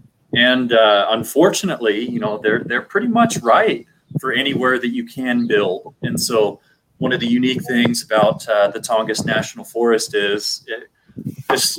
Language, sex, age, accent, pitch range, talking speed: English, male, 30-49, American, 110-130 Hz, 165 wpm